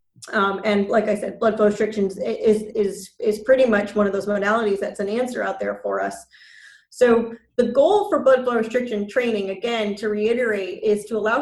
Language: English